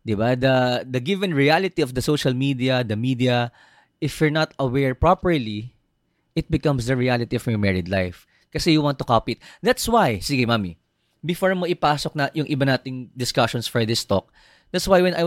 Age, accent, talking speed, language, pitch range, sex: 20-39, native, 195 wpm, Filipino, 120-170 Hz, male